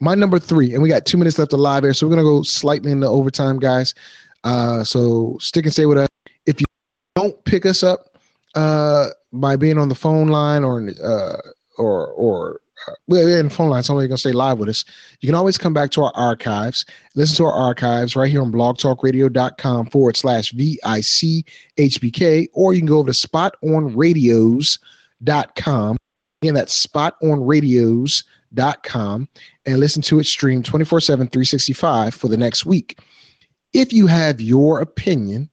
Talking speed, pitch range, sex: 175 wpm, 130-165 Hz, male